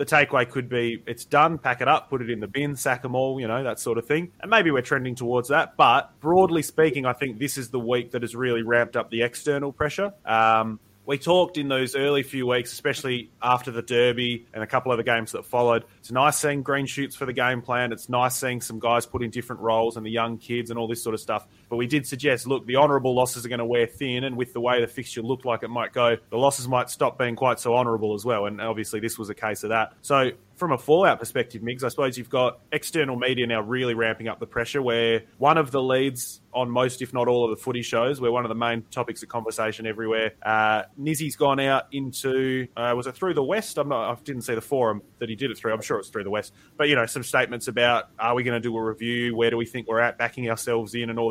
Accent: Australian